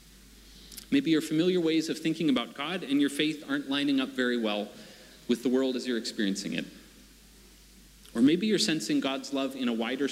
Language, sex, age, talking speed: English, male, 40-59, 190 wpm